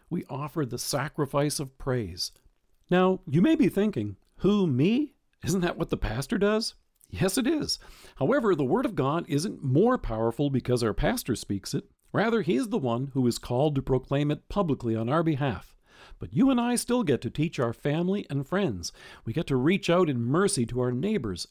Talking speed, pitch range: 200 wpm, 130-190 Hz